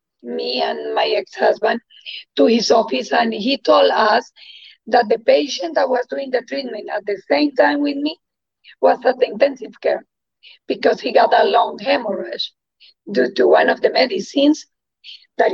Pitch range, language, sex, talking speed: 225-290 Hz, English, female, 165 wpm